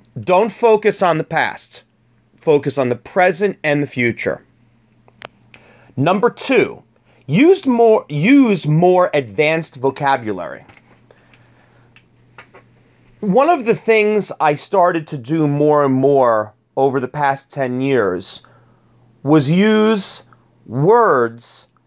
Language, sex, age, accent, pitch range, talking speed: English, male, 40-59, American, 125-185 Hz, 100 wpm